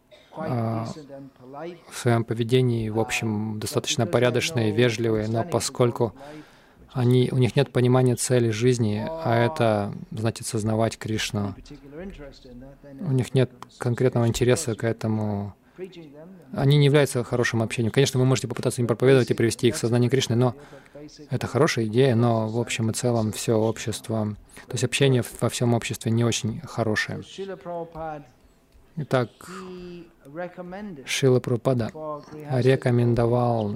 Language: Russian